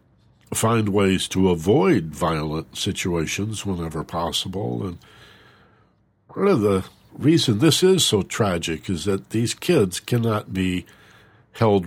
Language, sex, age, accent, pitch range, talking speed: English, male, 60-79, American, 90-110 Hz, 120 wpm